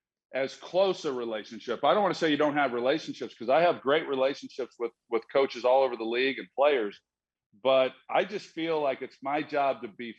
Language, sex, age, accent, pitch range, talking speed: English, male, 40-59, American, 120-155 Hz, 220 wpm